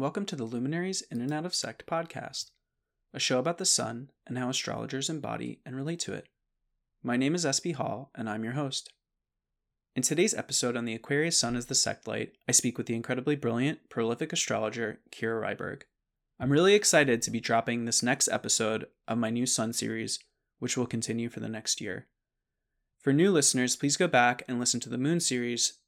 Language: English